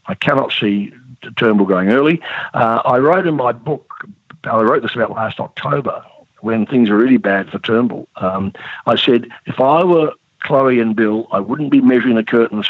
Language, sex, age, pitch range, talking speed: English, male, 50-69, 105-130 Hz, 190 wpm